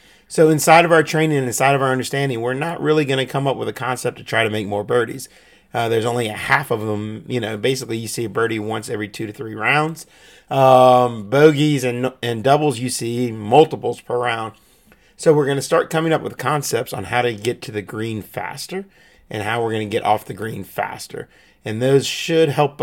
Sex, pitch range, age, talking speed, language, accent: male, 105-140 Hz, 30-49, 230 wpm, English, American